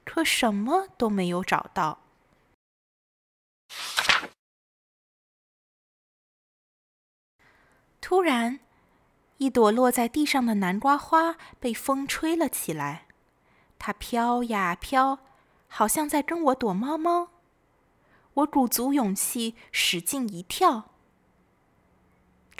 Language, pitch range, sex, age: Chinese, 195-280 Hz, female, 20-39